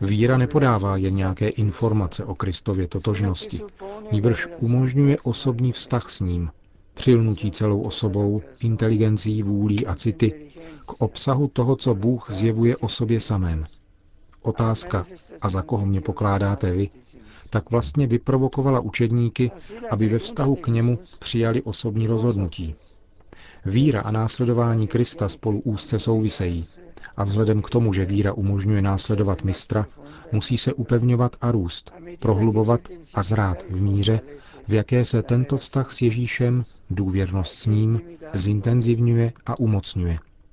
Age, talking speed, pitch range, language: 40-59, 130 wpm, 100-125 Hz, Czech